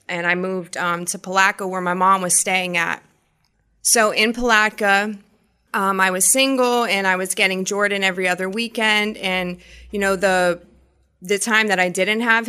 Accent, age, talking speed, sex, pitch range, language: American, 20-39, 180 wpm, female, 180-205 Hz, English